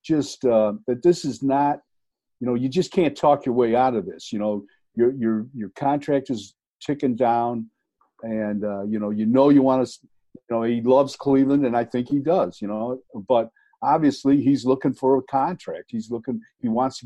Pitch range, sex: 115-140 Hz, male